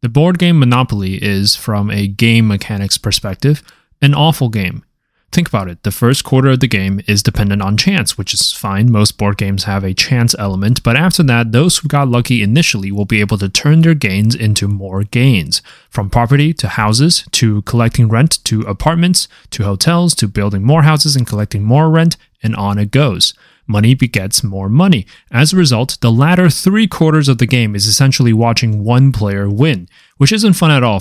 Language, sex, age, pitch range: English, male, 20-39, 105-145 Hz